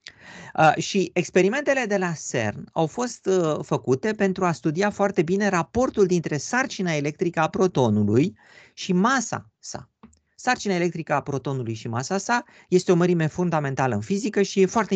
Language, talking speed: Romanian, 150 wpm